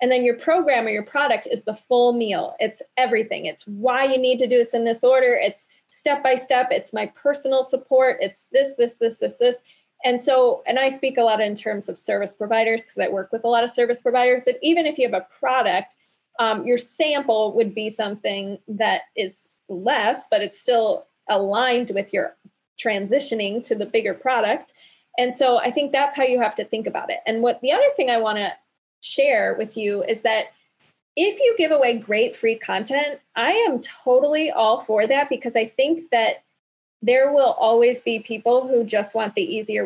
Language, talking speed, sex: English, 205 wpm, female